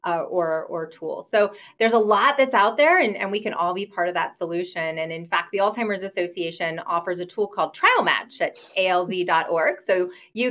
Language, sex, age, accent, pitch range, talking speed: English, female, 30-49, American, 175-225 Hz, 205 wpm